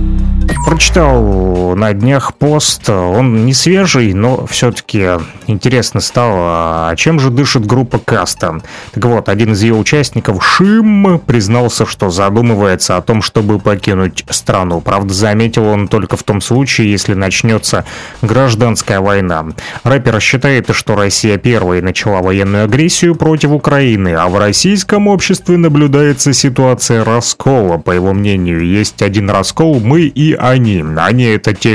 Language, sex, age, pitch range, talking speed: Russian, male, 30-49, 100-135 Hz, 140 wpm